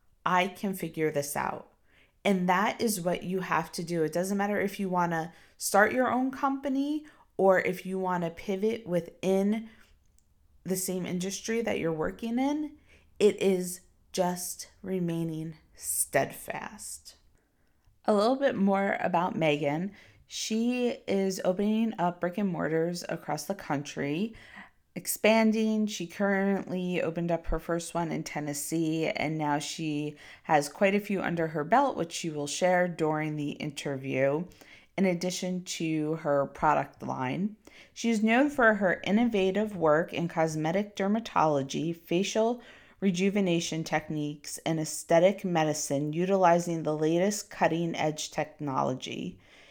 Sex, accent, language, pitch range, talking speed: female, American, English, 155-200 Hz, 140 wpm